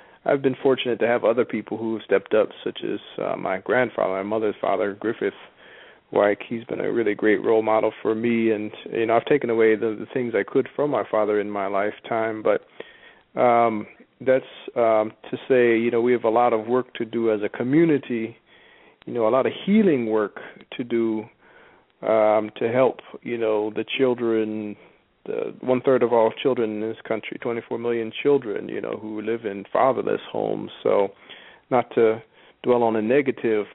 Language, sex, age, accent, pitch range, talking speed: English, male, 40-59, American, 110-125 Hz, 190 wpm